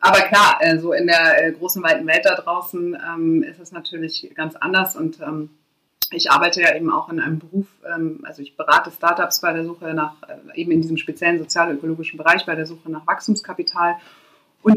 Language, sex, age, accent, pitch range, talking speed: German, female, 30-49, German, 155-170 Hz, 195 wpm